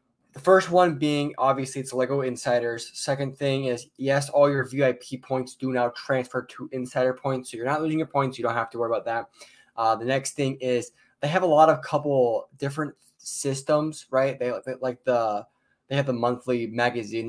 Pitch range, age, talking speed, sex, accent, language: 115-140 Hz, 10-29, 200 wpm, male, American, English